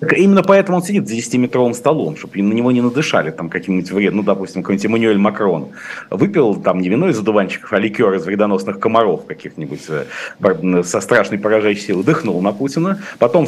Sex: male